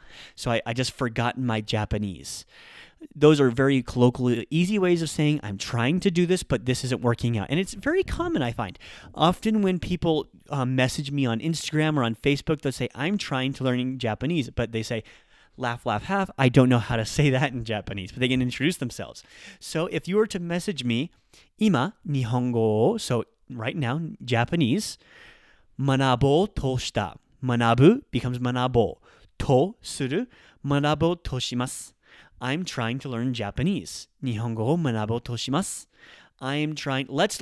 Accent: American